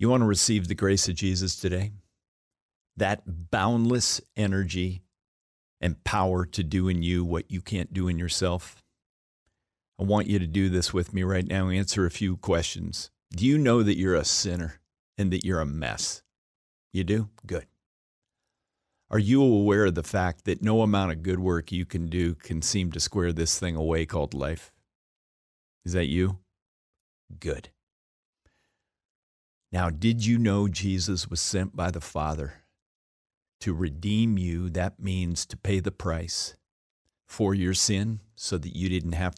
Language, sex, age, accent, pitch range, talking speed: English, male, 50-69, American, 85-100 Hz, 165 wpm